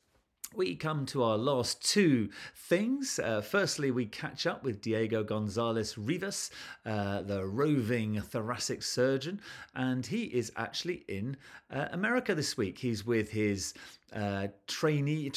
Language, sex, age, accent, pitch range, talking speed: English, male, 40-59, British, 100-135 Hz, 130 wpm